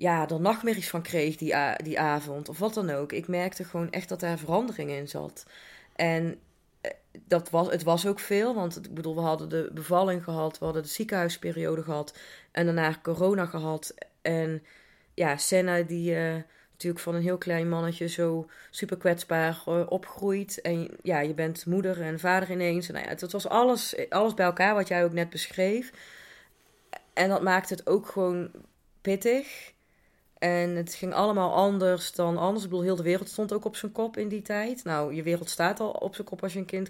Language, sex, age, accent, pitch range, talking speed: Dutch, female, 30-49, Dutch, 170-195 Hz, 200 wpm